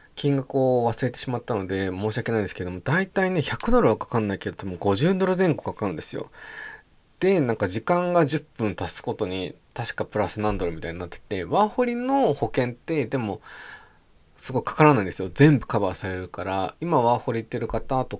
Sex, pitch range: male, 100-170 Hz